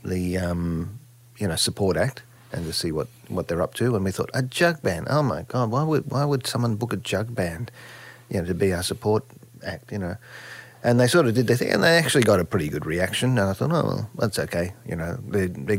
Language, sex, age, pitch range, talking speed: English, male, 40-59, 100-125 Hz, 255 wpm